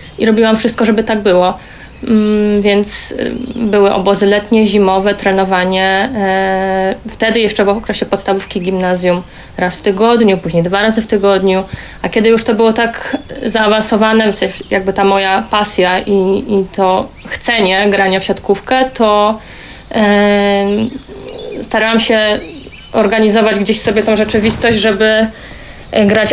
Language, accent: Polish, native